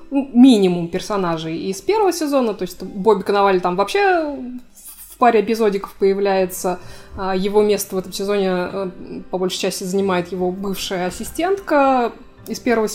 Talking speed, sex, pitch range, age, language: 135 wpm, female, 185-225 Hz, 20-39, Russian